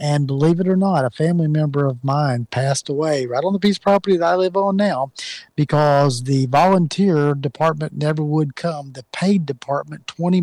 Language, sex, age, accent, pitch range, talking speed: English, male, 40-59, American, 140-175 Hz, 195 wpm